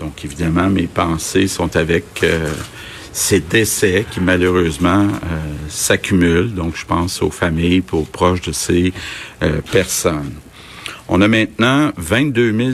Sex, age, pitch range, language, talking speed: male, 60-79, 90-105 Hz, French, 135 wpm